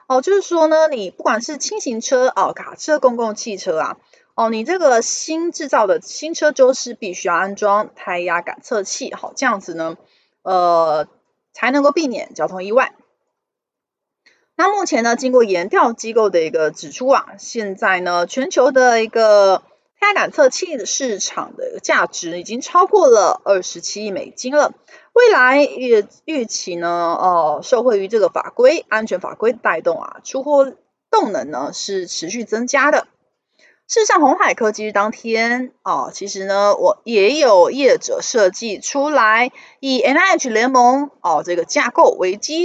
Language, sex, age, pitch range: Chinese, female, 30-49, 195-315 Hz